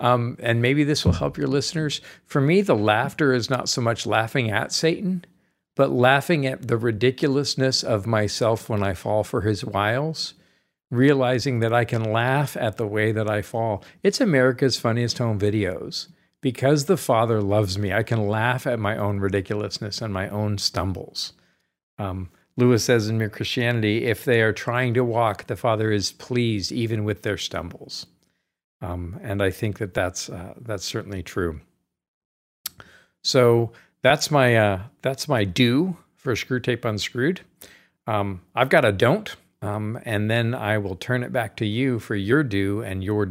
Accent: American